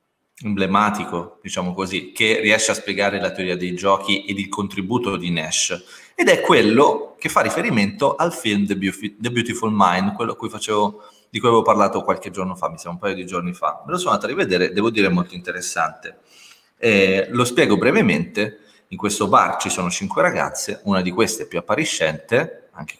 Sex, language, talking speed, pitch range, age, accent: male, Italian, 185 wpm, 90-130 Hz, 30-49, native